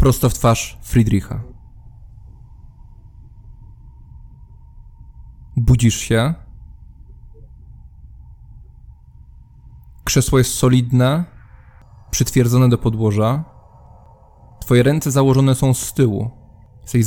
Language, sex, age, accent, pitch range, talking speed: English, male, 20-39, Polish, 110-135 Hz, 65 wpm